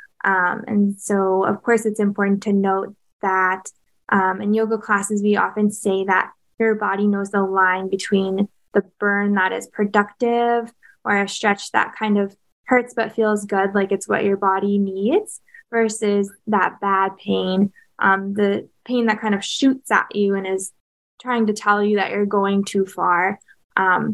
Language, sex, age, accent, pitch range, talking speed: English, female, 10-29, American, 195-220 Hz, 175 wpm